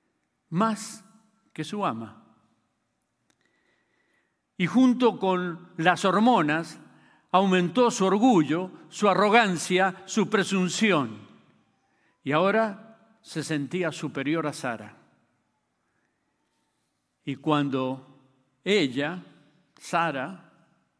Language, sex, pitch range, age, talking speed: Spanish, male, 140-195 Hz, 50-69, 75 wpm